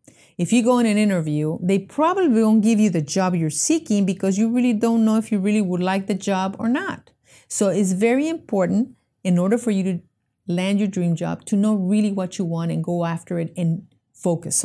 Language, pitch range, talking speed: English, 165-220 Hz, 220 wpm